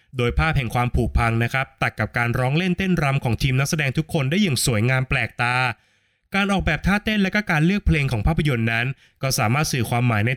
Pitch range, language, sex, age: 120-165 Hz, Thai, male, 20-39